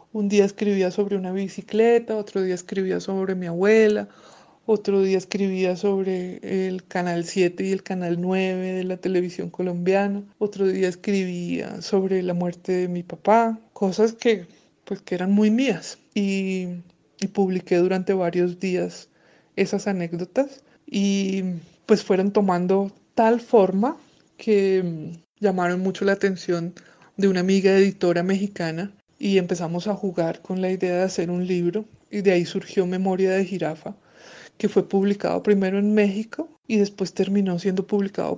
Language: Spanish